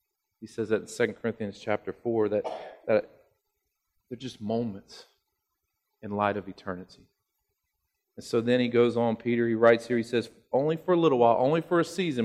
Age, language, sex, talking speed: 40-59, English, male, 180 wpm